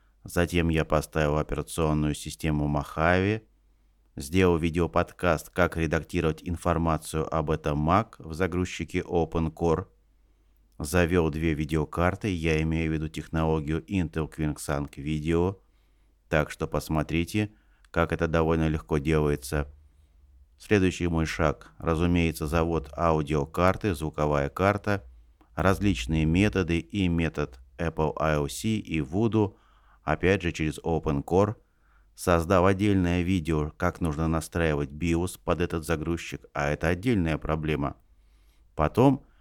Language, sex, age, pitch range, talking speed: Russian, male, 30-49, 75-90 Hz, 110 wpm